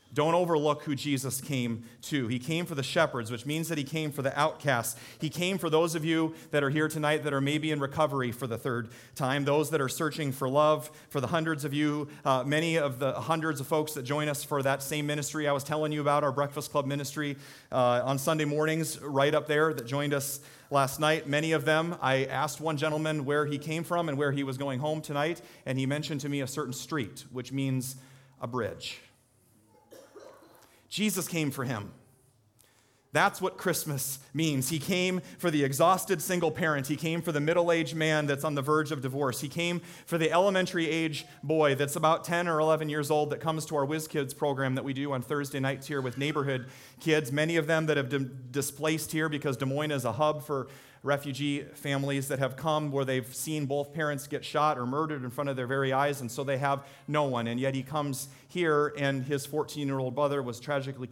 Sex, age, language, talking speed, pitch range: male, 30-49, English, 220 wpm, 130-155 Hz